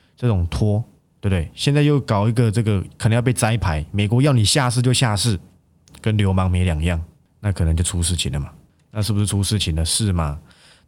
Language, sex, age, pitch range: Chinese, male, 20-39, 90-115 Hz